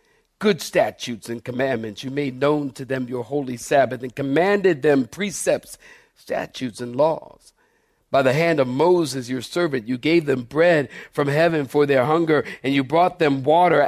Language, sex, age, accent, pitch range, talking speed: English, male, 50-69, American, 140-185 Hz, 175 wpm